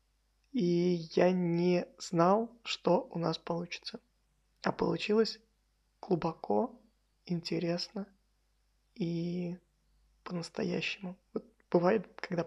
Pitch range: 170-205 Hz